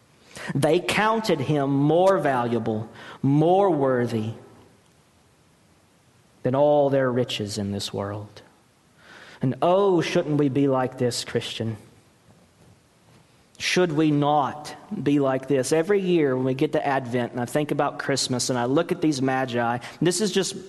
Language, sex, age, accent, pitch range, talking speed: English, male, 40-59, American, 130-170 Hz, 140 wpm